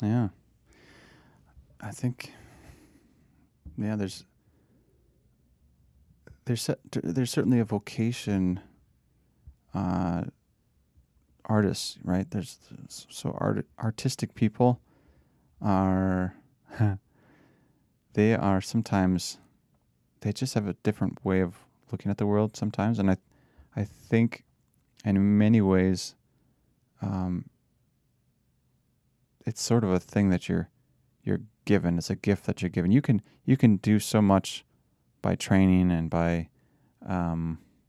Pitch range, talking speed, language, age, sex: 90-115 Hz, 110 wpm, English, 30-49, male